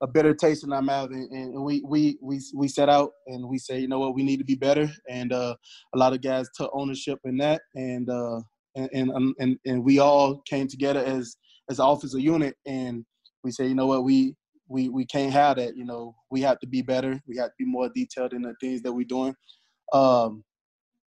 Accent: American